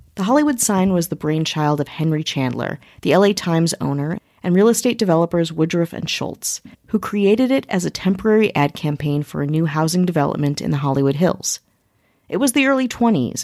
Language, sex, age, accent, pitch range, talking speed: English, female, 30-49, American, 155-210 Hz, 190 wpm